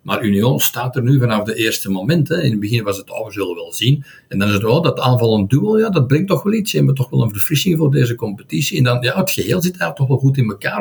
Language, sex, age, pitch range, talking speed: Dutch, male, 60-79, 105-135 Hz, 320 wpm